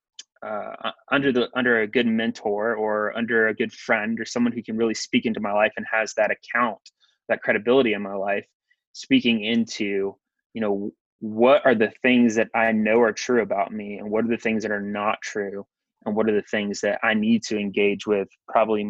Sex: male